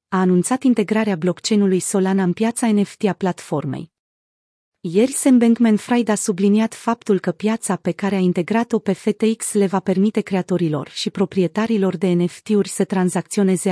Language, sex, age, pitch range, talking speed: Romanian, female, 30-49, 180-220 Hz, 145 wpm